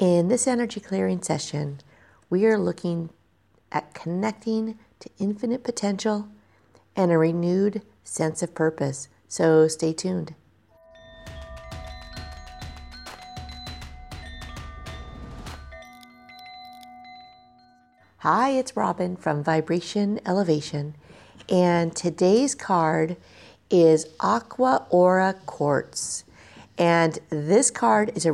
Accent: American